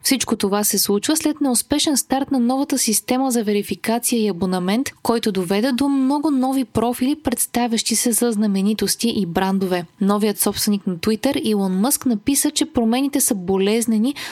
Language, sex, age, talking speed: Bulgarian, female, 20-39, 155 wpm